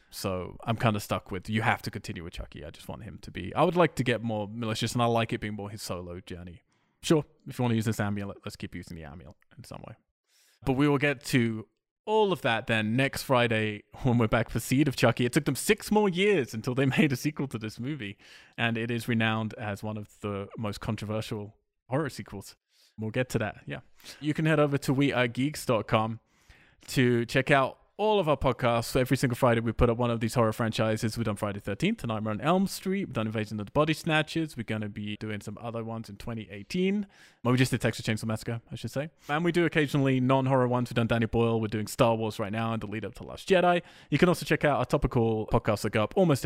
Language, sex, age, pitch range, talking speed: English, male, 20-39, 105-135 Hz, 250 wpm